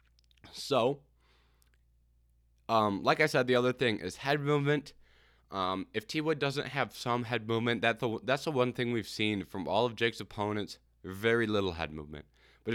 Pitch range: 95-130 Hz